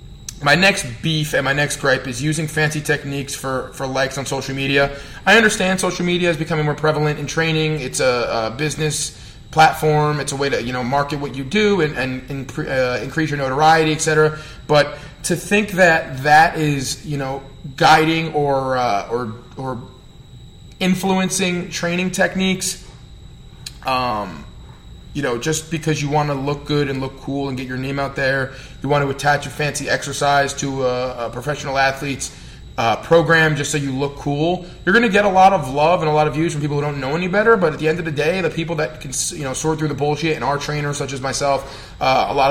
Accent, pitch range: American, 135-160 Hz